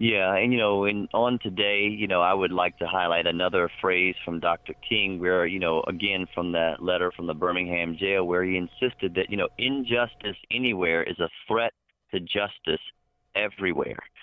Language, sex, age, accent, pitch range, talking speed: English, male, 40-59, American, 90-110 Hz, 185 wpm